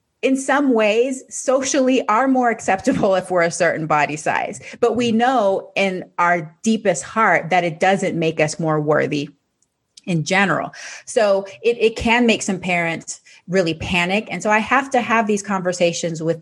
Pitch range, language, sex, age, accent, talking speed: 165-205 Hz, English, female, 30-49, American, 170 wpm